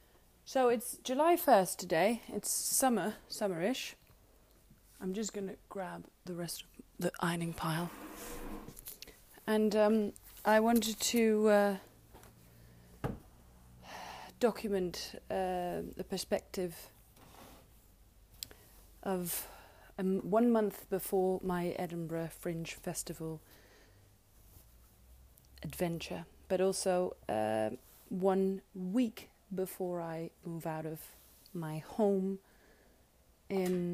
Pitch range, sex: 165-210 Hz, female